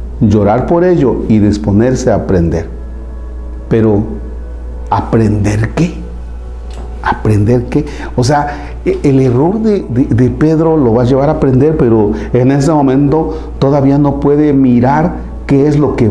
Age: 40-59